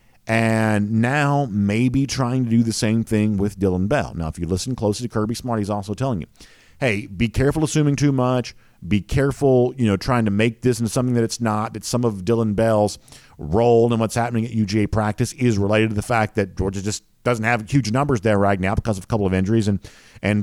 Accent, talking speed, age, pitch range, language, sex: American, 230 wpm, 50-69, 110-135 Hz, English, male